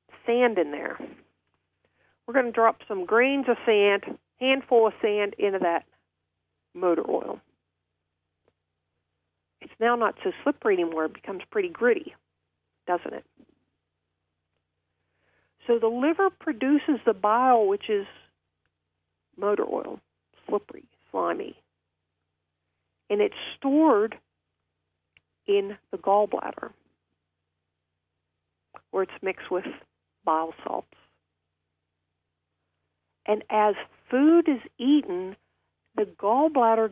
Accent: American